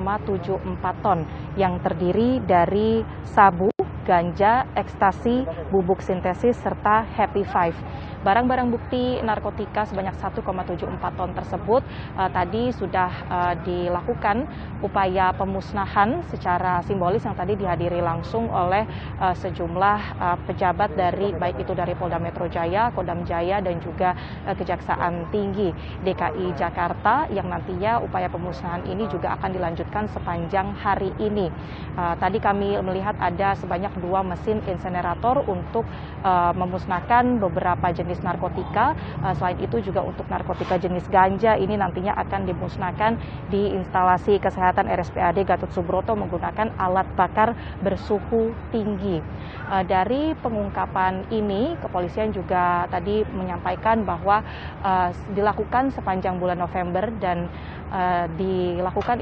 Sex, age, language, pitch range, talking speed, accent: female, 20-39, Indonesian, 180-210 Hz, 120 wpm, native